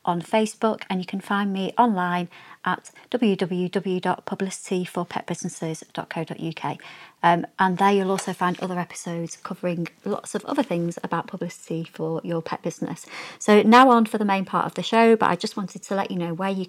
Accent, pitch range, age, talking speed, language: British, 170-200 Hz, 30-49, 175 wpm, English